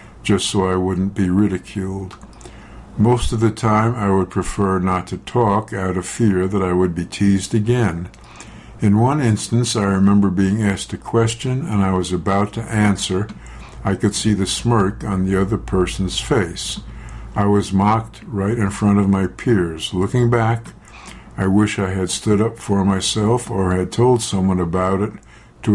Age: 60-79